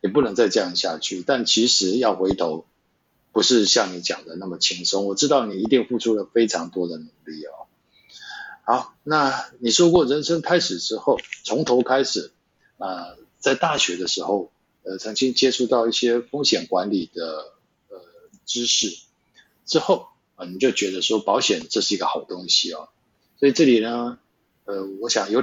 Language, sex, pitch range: Chinese, male, 100-135 Hz